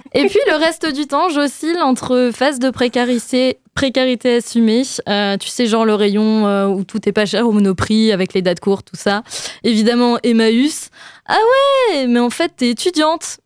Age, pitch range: 20-39, 215-270 Hz